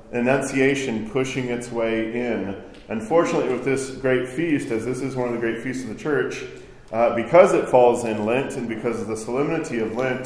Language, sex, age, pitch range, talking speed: English, male, 40-59, 110-135 Hz, 200 wpm